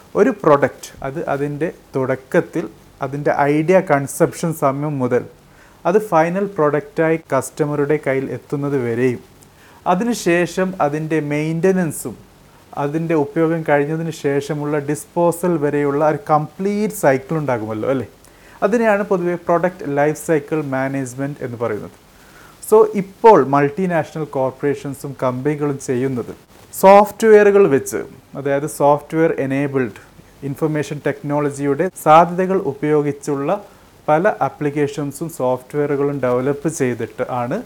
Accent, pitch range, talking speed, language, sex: native, 135-170 Hz, 95 wpm, Malayalam, male